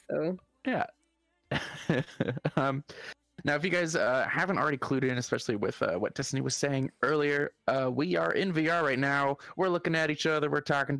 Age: 20-39